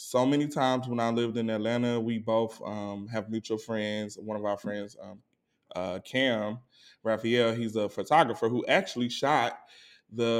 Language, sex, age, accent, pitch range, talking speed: English, male, 20-39, American, 110-130 Hz, 165 wpm